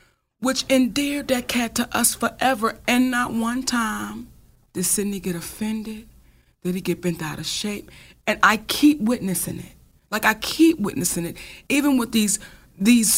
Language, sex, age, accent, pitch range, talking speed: English, female, 30-49, American, 215-290 Hz, 165 wpm